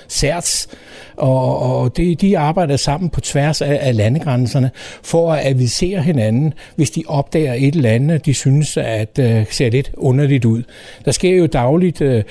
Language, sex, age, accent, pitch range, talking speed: Danish, male, 60-79, native, 130-170 Hz, 150 wpm